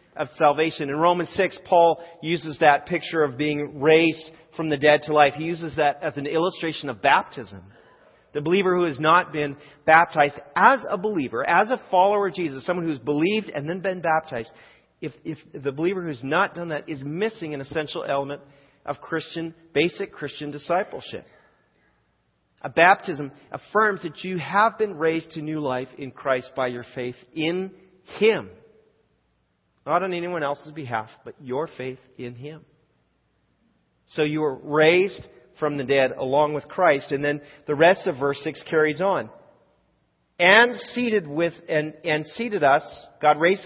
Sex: male